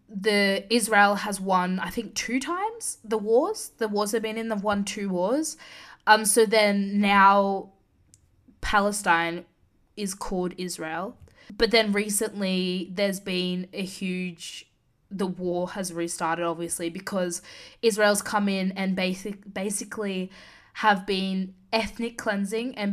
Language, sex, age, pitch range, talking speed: English, female, 20-39, 180-215 Hz, 135 wpm